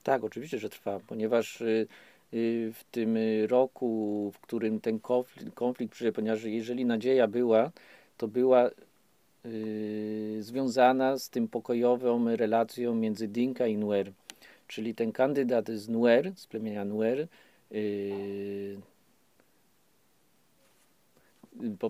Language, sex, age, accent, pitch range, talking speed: Polish, male, 40-59, native, 105-125 Hz, 100 wpm